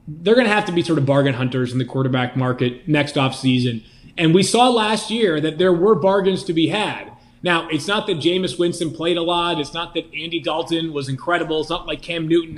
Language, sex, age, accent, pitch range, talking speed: English, male, 30-49, American, 145-185 Hz, 235 wpm